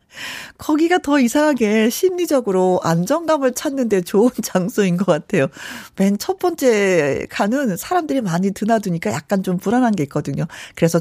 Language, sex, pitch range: Korean, female, 180-260 Hz